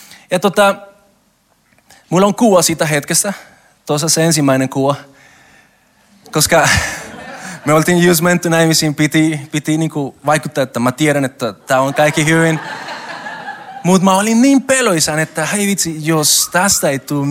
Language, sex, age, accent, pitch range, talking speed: Finnish, male, 20-39, native, 135-180 Hz, 140 wpm